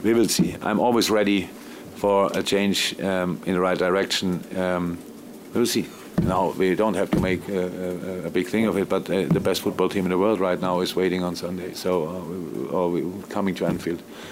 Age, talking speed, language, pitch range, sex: 50-69, 215 wpm, English, 90-100 Hz, male